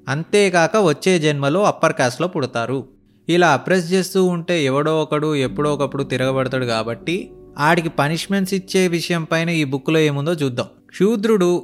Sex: male